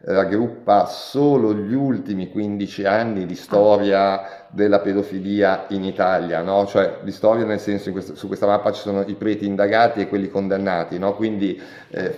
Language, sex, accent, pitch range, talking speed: Italian, male, native, 95-110 Hz, 165 wpm